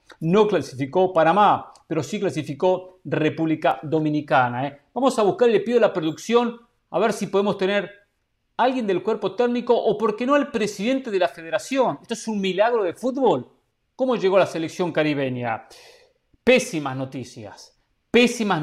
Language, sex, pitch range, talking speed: Spanish, male, 160-230 Hz, 165 wpm